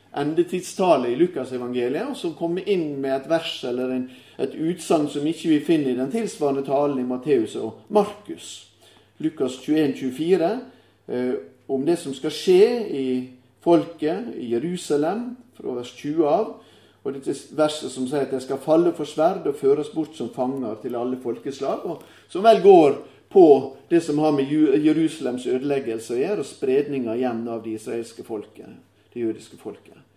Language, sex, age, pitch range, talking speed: English, male, 40-59, 130-185 Hz, 180 wpm